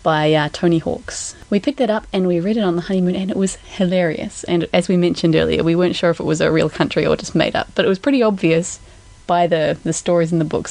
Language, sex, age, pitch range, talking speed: English, female, 20-39, 165-205 Hz, 275 wpm